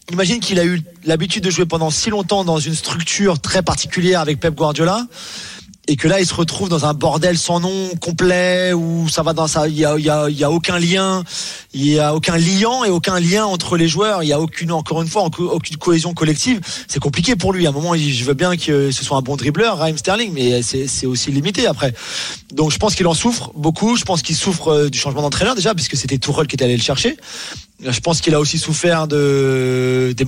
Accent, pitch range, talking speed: French, 145-185 Hz, 240 wpm